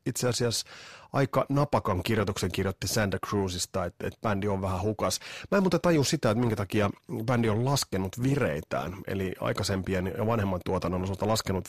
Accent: native